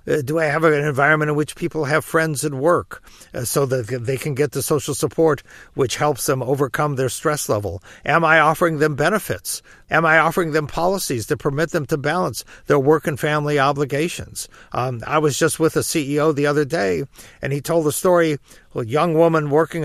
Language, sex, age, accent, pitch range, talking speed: English, male, 50-69, American, 140-170 Hz, 205 wpm